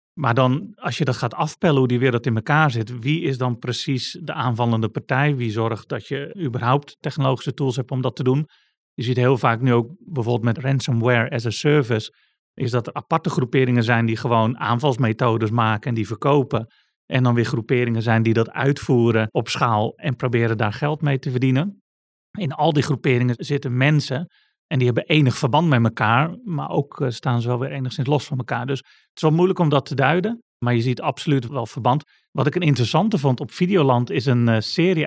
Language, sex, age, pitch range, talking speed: Dutch, male, 40-59, 120-145 Hz, 210 wpm